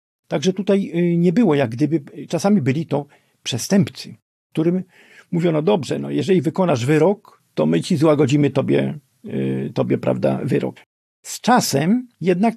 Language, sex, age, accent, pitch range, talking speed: Polish, male, 50-69, native, 140-190 Hz, 140 wpm